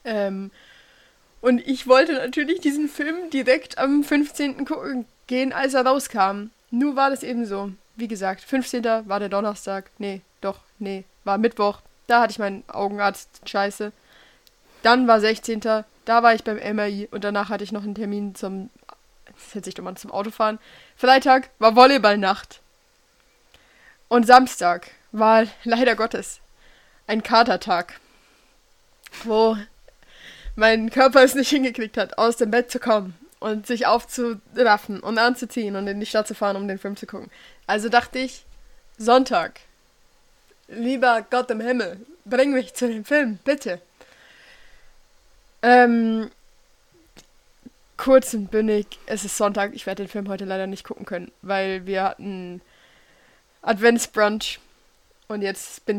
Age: 20-39